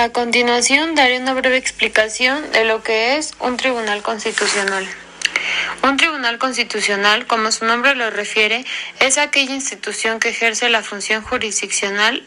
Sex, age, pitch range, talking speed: female, 20-39, 215-250 Hz, 140 wpm